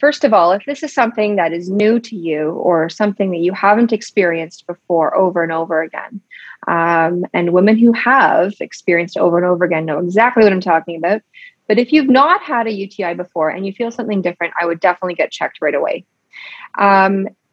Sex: female